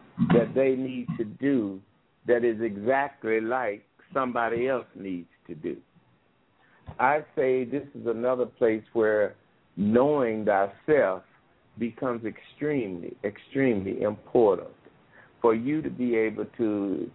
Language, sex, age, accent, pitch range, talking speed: English, male, 60-79, American, 115-140 Hz, 115 wpm